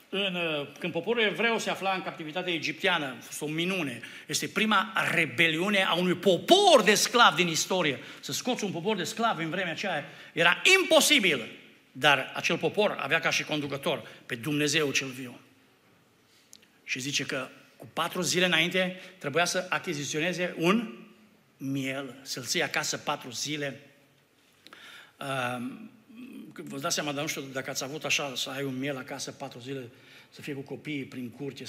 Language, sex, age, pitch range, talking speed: Romanian, male, 60-79, 140-180 Hz, 160 wpm